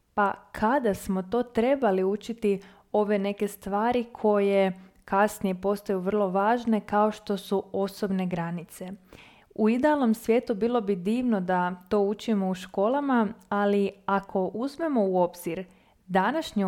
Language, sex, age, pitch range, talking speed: Croatian, female, 20-39, 195-230 Hz, 125 wpm